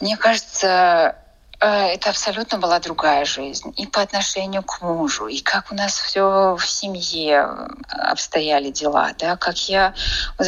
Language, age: Russian, 20-39